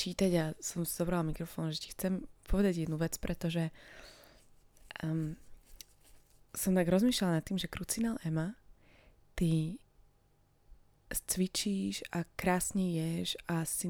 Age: 20-39